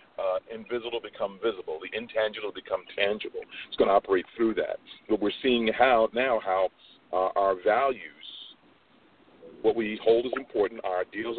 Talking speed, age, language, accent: 160 wpm, 40-59, English, American